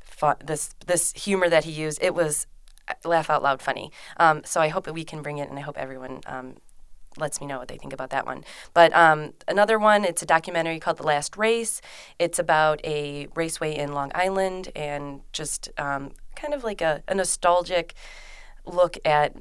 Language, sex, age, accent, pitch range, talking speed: English, female, 20-39, American, 145-175 Hz, 200 wpm